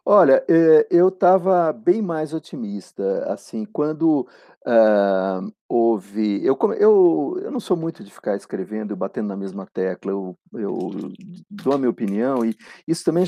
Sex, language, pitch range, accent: male, Portuguese, 115-165 Hz, Brazilian